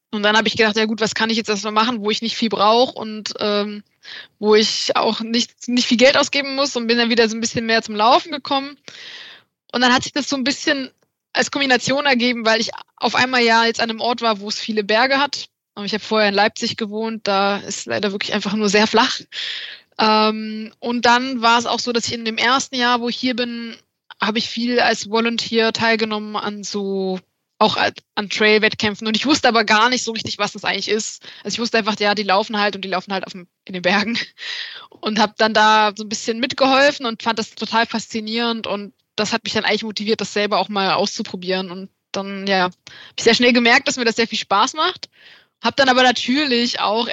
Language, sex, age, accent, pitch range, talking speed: German, female, 20-39, German, 210-240 Hz, 230 wpm